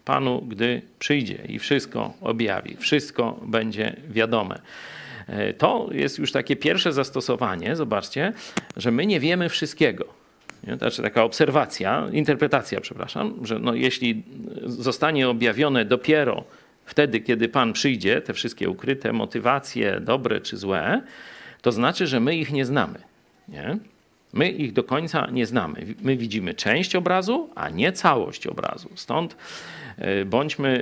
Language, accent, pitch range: Polish, native, 115-155 Hz